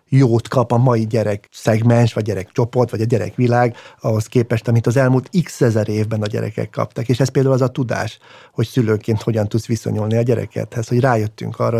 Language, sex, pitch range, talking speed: Hungarian, male, 115-130 Hz, 200 wpm